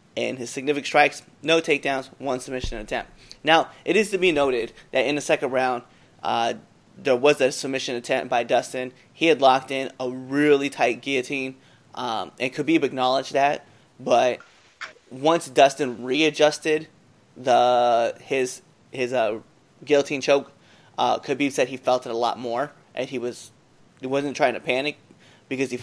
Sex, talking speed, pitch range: male, 165 wpm, 125-150 Hz